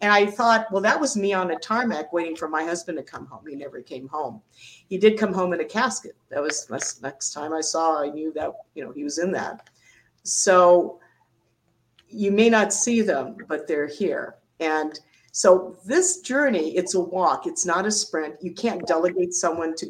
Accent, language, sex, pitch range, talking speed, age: American, English, female, 160-215 Hz, 210 wpm, 50-69